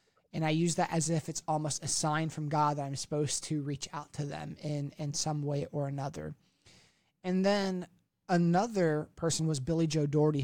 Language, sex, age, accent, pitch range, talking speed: English, male, 20-39, American, 150-175 Hz, 195 wpm